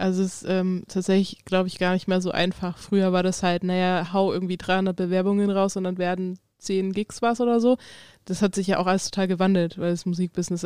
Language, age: German, 20-39